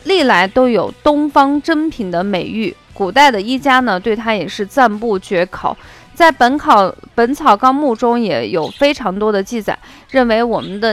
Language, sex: Chinese, female